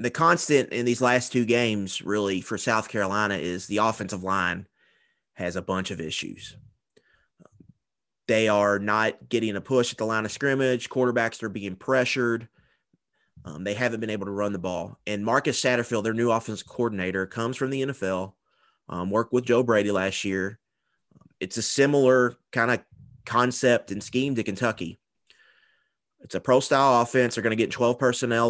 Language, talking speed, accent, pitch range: English, 175 wpm, American, 105-125 Hz